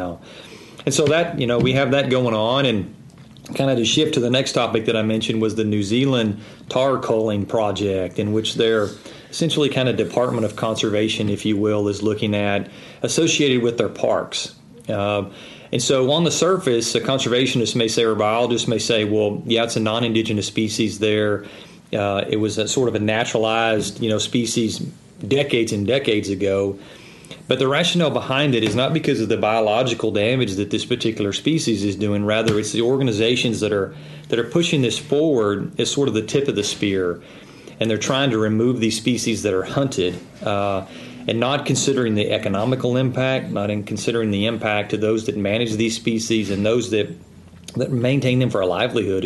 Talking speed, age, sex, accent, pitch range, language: 195 wpm, 40-59, male, American, 105-125 Hz, English